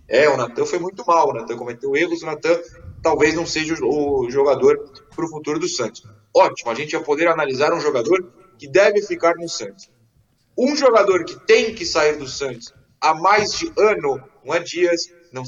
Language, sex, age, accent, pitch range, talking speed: Portuguese, male, 20-39, Brazilian, 155-235 Hz, 200 wpm